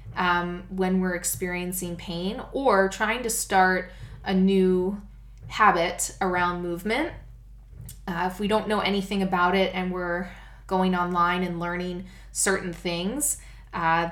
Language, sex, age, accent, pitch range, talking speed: English, female, 20-39, American, 170-195 Hz, 130 wpm